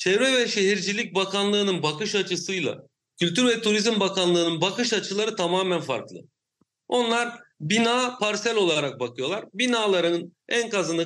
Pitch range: 175-230 Hz